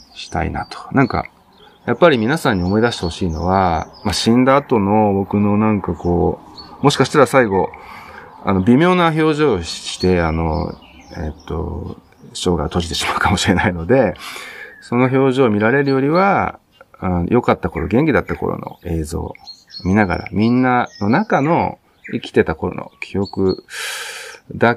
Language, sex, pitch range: Japanese, male, 90-140 Hz